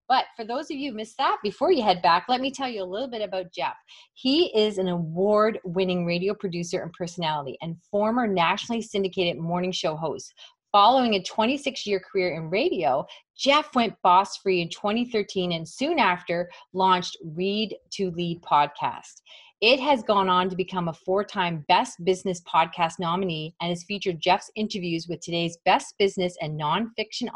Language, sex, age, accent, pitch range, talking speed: English, female, 30-49, American, 175-225 Hz, 170 wpm